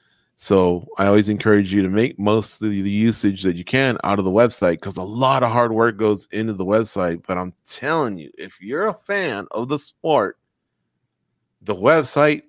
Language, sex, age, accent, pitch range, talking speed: English, male, 30-49, American, 100-115 Hz, 195 wpm